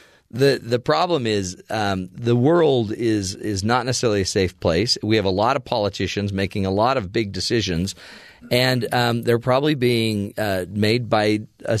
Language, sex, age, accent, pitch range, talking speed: English, male, 40-59, American, 105-140 Hz, 180 wpm